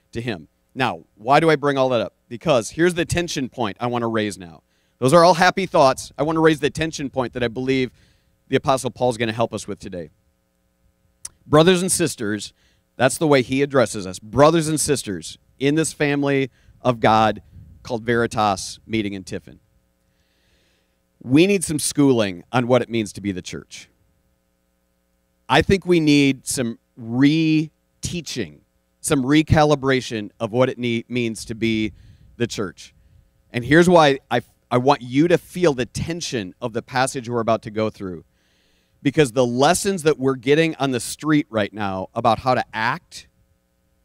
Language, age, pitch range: English, 40-59, 105-145 Hz